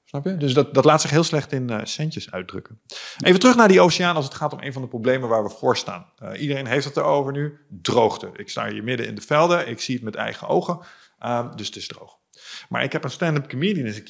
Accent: Dutch